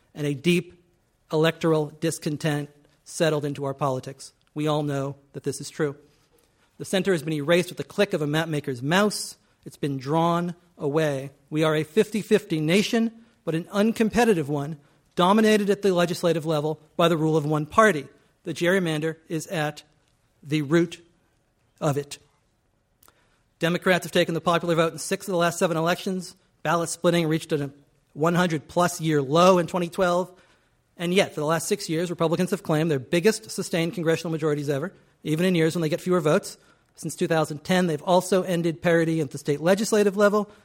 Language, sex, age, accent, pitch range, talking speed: English, male, 50-69, American, 150-185 Hz, 175 wpm